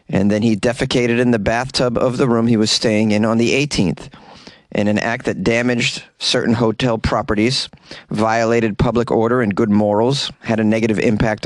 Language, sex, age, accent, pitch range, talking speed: English, male, 30-49, American, 110-135 Hz, 185 wpm